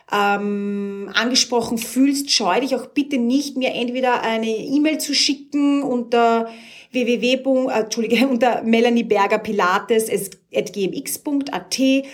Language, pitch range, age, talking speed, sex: German, 200-235 Hz, 30-49, 95 wpm, female